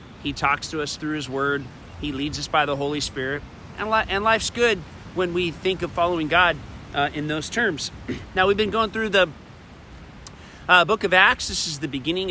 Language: English